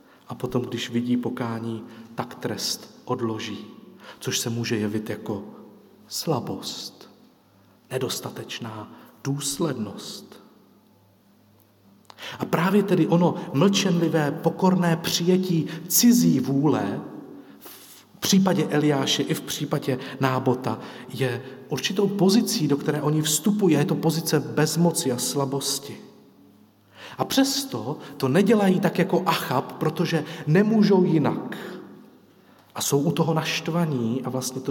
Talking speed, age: 110 wpm, 40-59